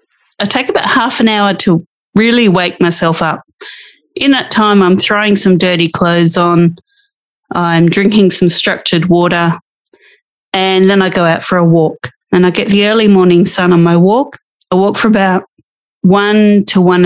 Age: 30-49